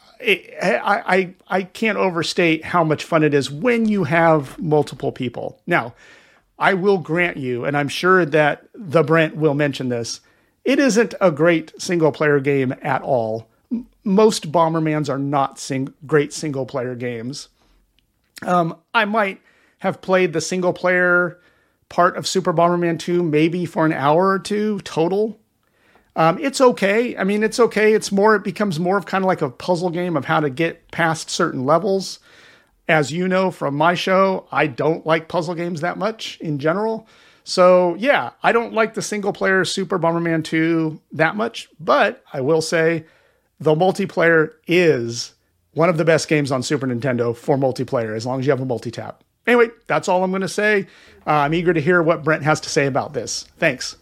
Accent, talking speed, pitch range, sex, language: American, 180 wpm, 150-190 Hz, male, English